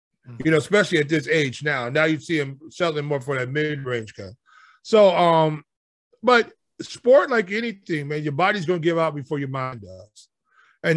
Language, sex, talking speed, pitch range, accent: English, male, 190 wpm, 145-175 Hz, American